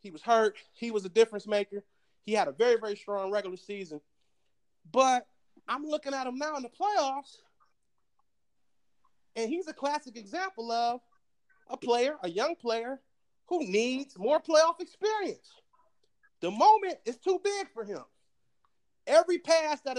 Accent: American